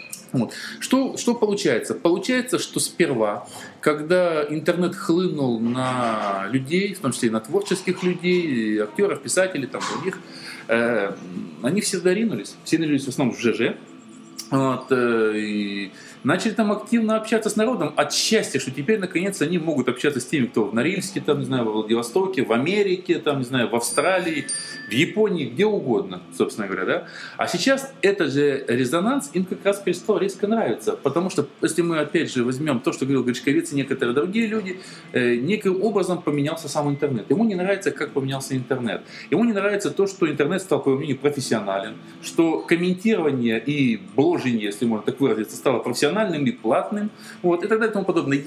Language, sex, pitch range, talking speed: Russian, male, 130-200 Hz, 175 wpm